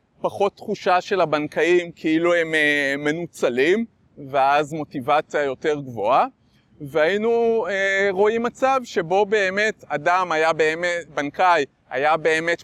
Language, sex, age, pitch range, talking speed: Hebrew, male, 30-49, 145-185 Hz, 105 wpm